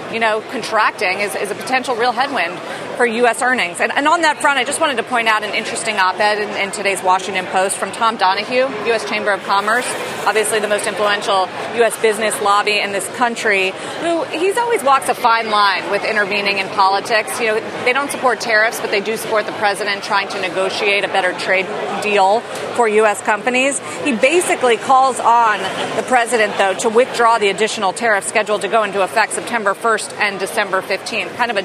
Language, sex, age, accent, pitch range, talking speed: English, female, 30-49, American, 200-245 Hz, 200 wpm